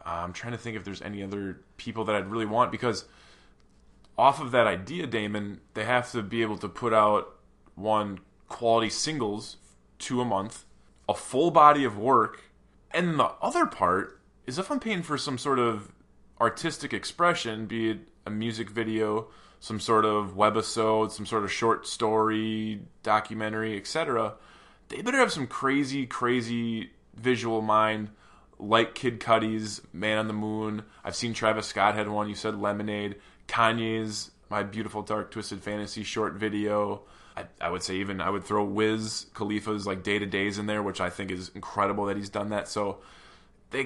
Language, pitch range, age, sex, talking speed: English, 100-115 Hz, 20-39, male, 175 wpm